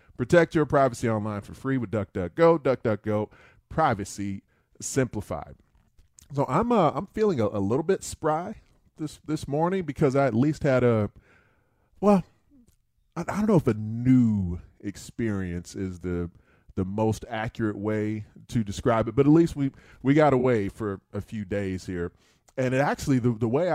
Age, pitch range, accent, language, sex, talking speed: 30-49, 95-130 Hz, American, English, male, 165 wpm